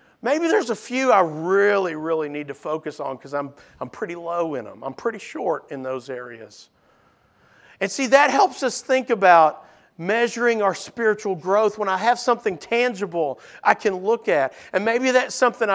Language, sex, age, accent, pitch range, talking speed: English, male, 50-69, American, 185-245 Hz, 185 wpm